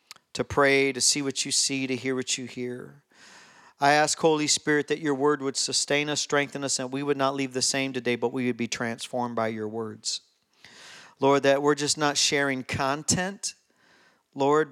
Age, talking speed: 50-69, 195 wpm